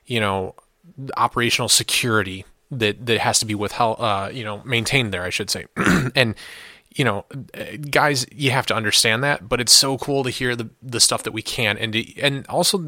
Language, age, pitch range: English, 20-39, 105-125 Hz